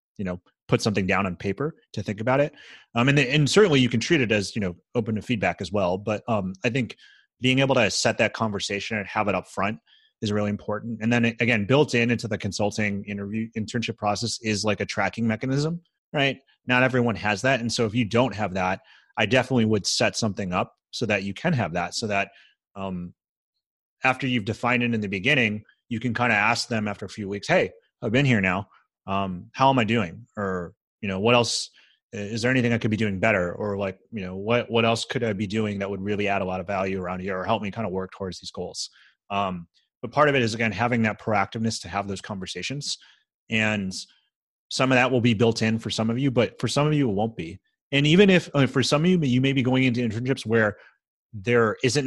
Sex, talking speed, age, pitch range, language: male, 240 wpm, 30-49, 100-125 Hz, English